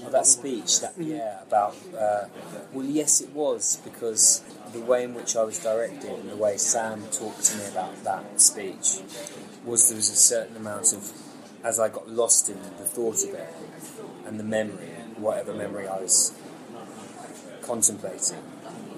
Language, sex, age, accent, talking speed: English, male, 20-39, British, 170 wpm